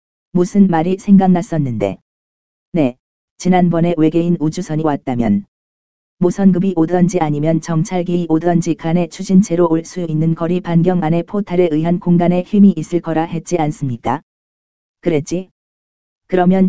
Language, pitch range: Korean, 155-180 Hz